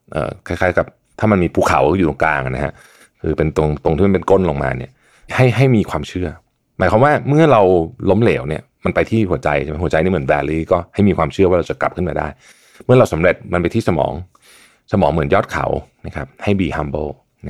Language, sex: Thai, male